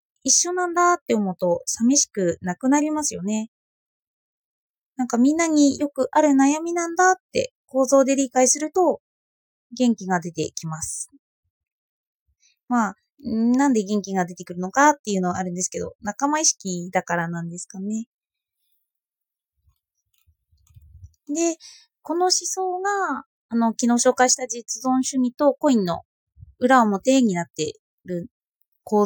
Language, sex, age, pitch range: Japanese, female, 20-39, 185-305 Hz